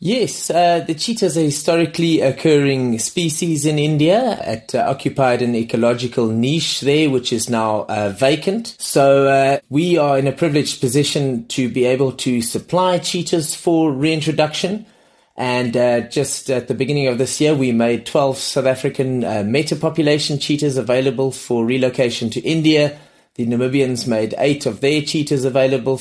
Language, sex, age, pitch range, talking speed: English, male, 30-49, 125-155 Hz, 155 wpm